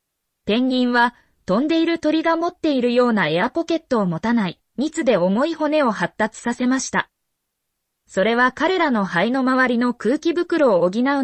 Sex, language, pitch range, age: female, Japanese, 205-300 Hz, 20-39